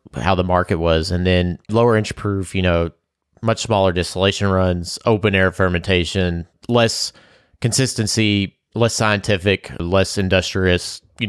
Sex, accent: male, American